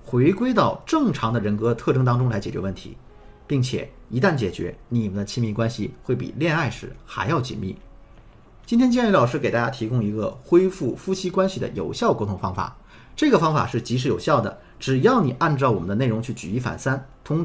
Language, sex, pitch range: Chinese, male, 105-145 Hz